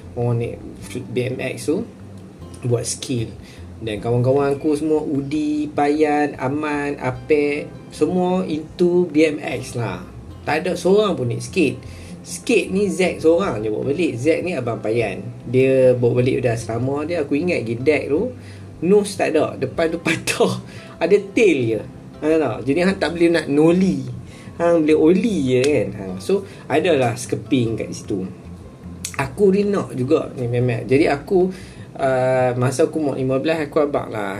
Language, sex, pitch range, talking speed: Malay, male, 125-160 Hz, 155 wpm